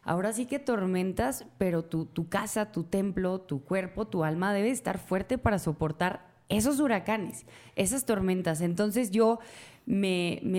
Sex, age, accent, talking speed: female, 20-39, Mexican, 155 wpm